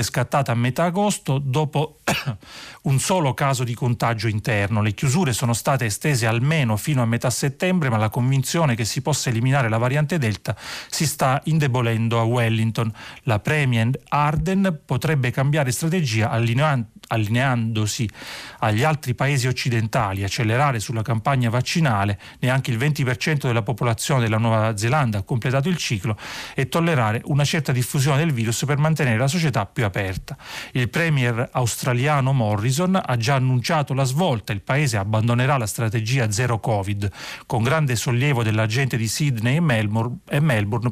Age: 40-59